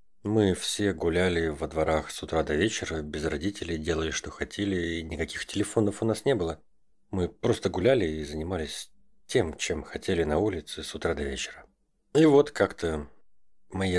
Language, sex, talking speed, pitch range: Russian, male, 165 wpm, 85-115 Hz